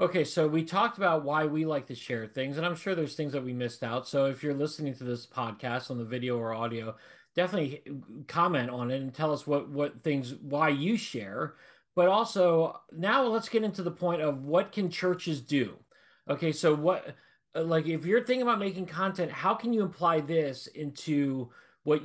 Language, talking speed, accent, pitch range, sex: English, 205 wpm, American, 130-175 Hz, male